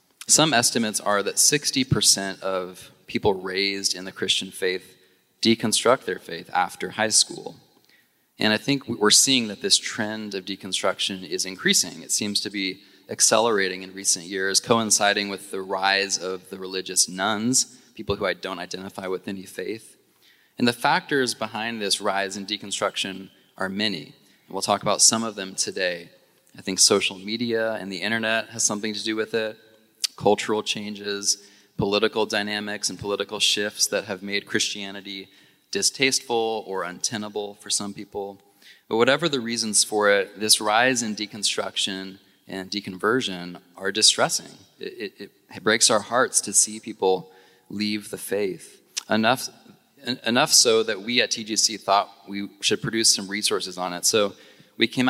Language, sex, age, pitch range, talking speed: English, male, 20-39, 95-110 Hz, 160 wpm